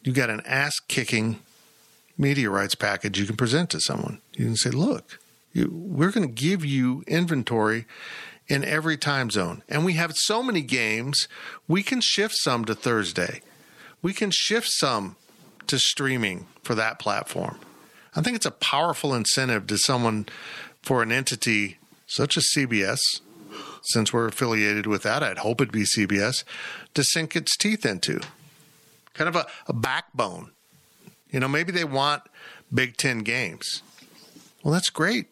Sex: male